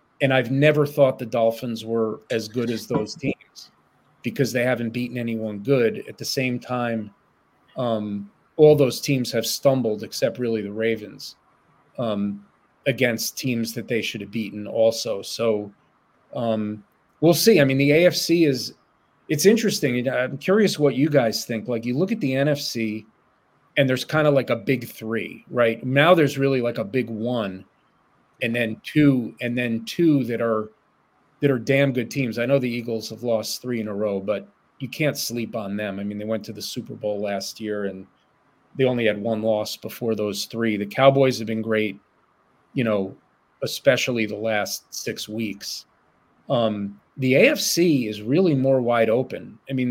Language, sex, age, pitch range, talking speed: English, male, 40-59, 110-140 Hz, 180 wpm